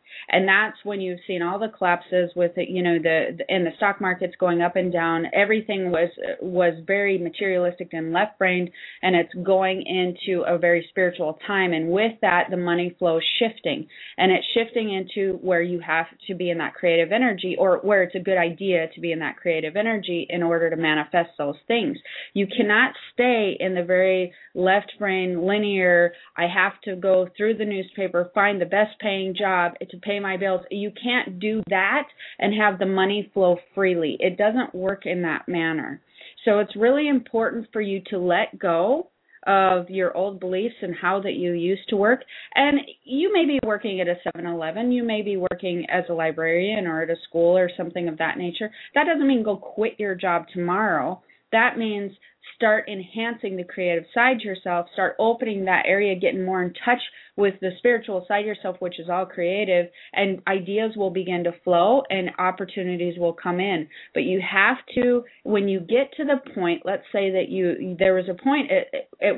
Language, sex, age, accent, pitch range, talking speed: English, female, 30-49, American, 175-210 Hz, 195 wpm